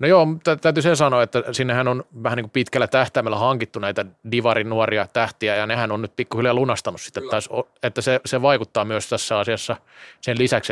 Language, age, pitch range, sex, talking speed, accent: Finnish, 30-49, 110-125 Hz, male, 170 wpm, native